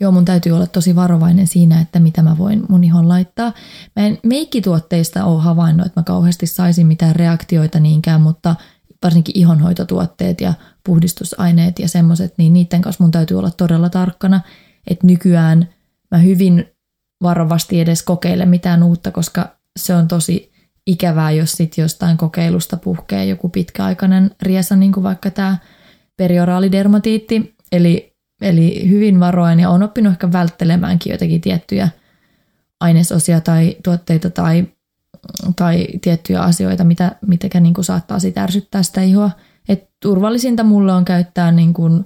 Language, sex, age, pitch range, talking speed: Finnish, female, 20-39, 170-190 Hz, 140 wpm